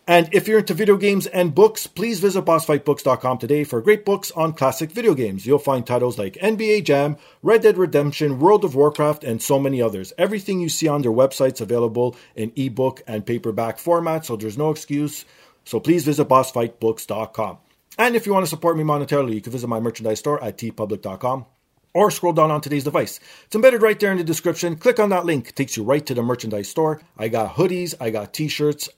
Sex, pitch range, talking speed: male, 120-170 Hz, 210 wpm